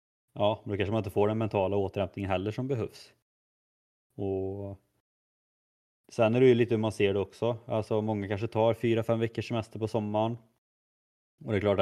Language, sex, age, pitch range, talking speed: Swedish, male, 20-39, 95-110 Hz, 190 wpm